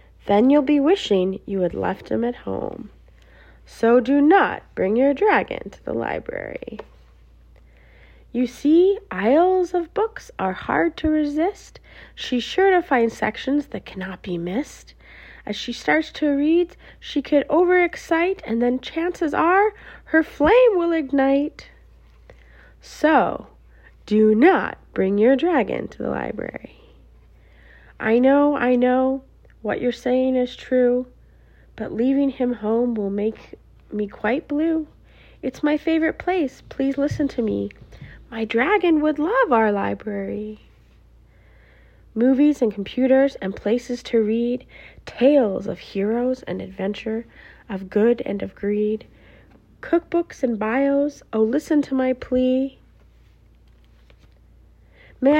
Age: 30-49